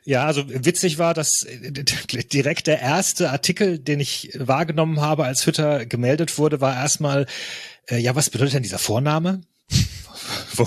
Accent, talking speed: German, 145 wpm